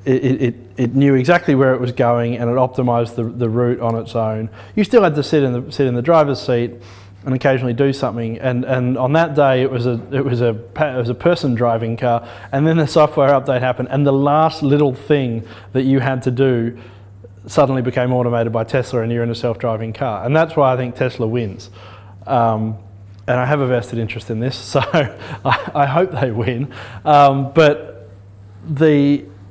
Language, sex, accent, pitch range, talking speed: English, male, Australian, 110-135 Hz, 210 wpm